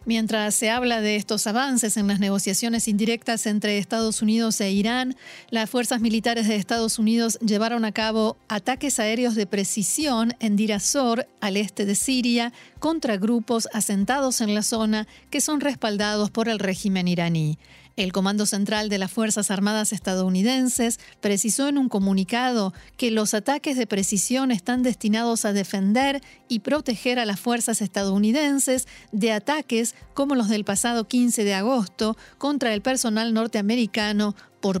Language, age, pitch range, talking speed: Spanish, 40-59, 205-240 Hz, 150 wpm